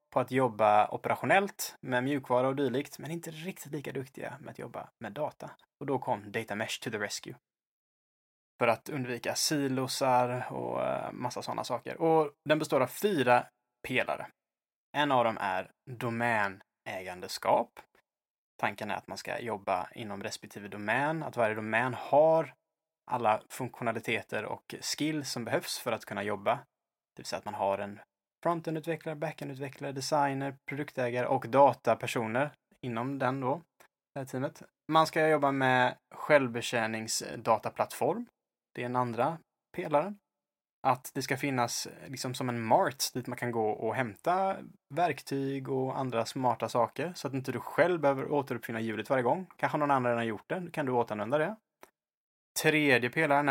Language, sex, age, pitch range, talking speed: Swedish, male, 20-39, 120-150 Hz, 160 wpm